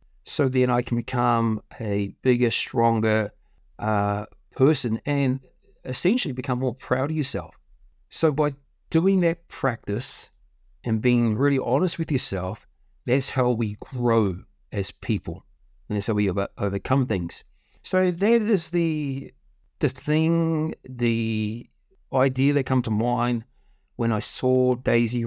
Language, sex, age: English, male, 30-49